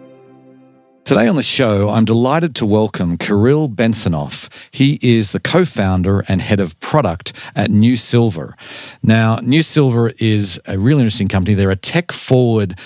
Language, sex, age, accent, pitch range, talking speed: English, male, 50-69, Australian, 95-110 Hz, 150 wpm